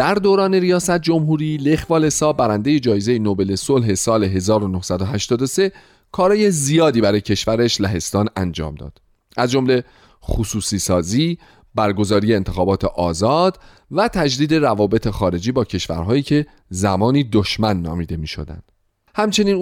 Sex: male